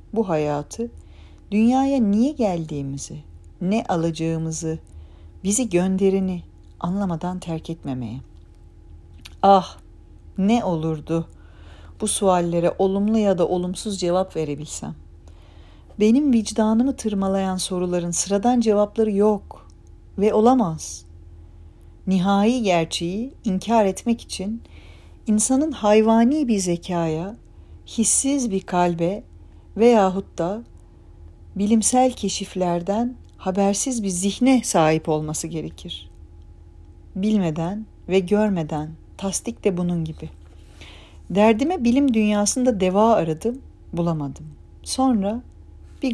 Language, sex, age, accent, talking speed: Turkish, female, 40-59, native, 90 wpm